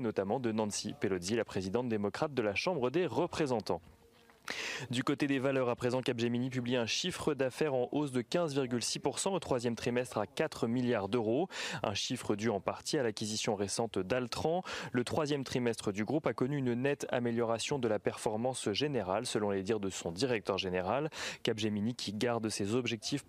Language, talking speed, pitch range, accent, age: French, 180 wpm, 110-135 Hz, French, 20-39